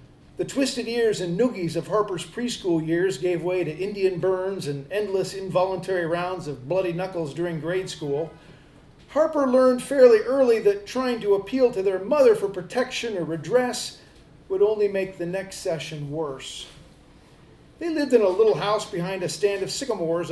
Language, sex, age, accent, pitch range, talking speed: English, male, 40-59, American, 175-230 Hz, 170 wpm